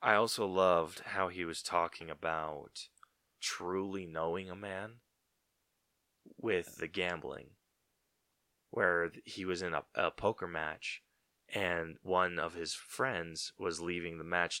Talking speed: 130 wpm